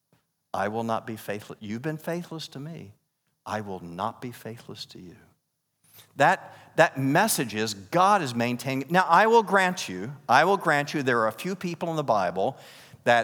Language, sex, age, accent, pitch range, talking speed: English, male, 50-69, American, 115-170 Hz, 190 wpm